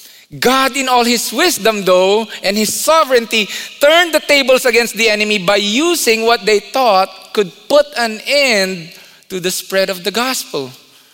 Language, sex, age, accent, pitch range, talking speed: English, male, 20-39, Filipino, 160-220 Hz, 160 wpm